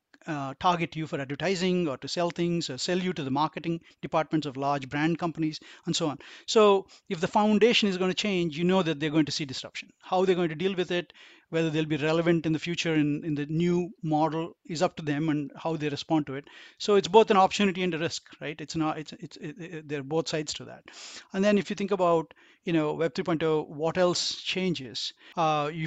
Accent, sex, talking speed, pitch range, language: Indian, male, 240 wpm, 150-185 Hz, English